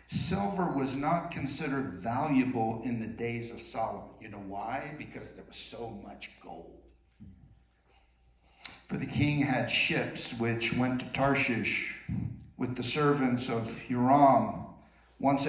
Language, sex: English, male